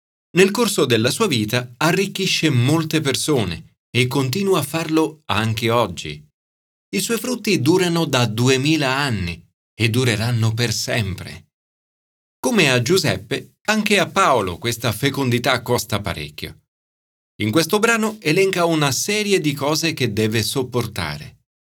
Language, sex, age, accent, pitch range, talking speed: Italian, male, 40-59, native, 105-160 Hz, 125 wpm